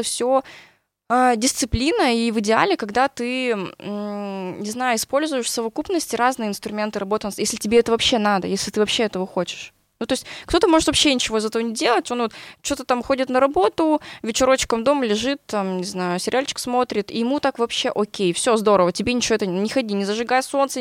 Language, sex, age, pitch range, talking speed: Russian, female, 20-39, 200-250 Hz, 185 wpm